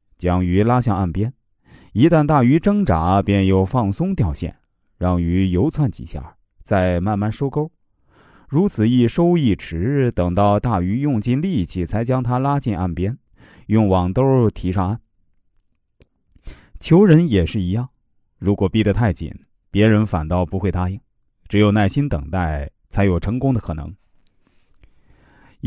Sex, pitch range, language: male, 90-130 Hz, Chinese